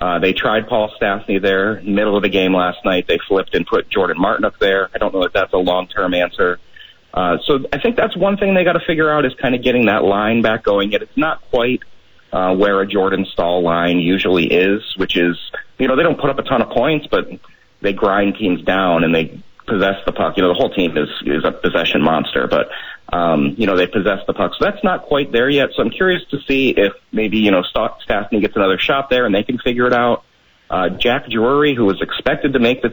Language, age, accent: English, 30-49, American